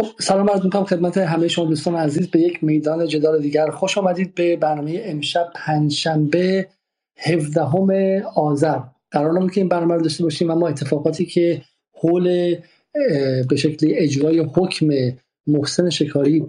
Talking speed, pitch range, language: 140 wpm, 140-160 Hz, Persian